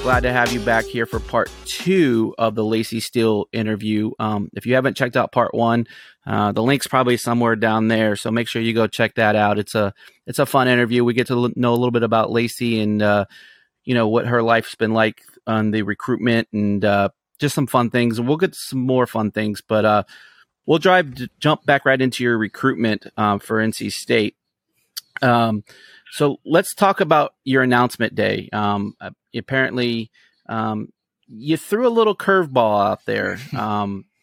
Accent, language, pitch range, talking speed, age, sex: American, English, 110-130 Hz, 195 wpm, 30-49, male